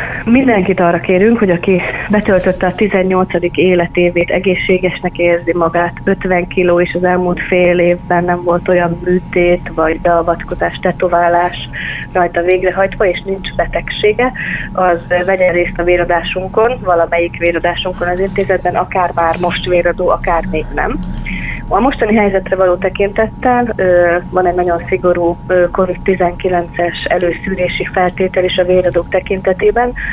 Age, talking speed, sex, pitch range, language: 30-49, 125 wpm, female, 175-190 Hz, Hungarian